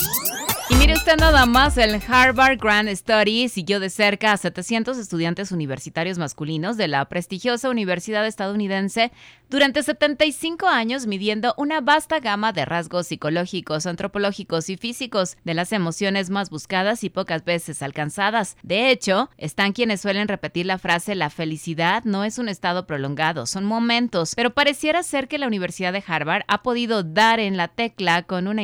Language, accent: Spanish, Mexican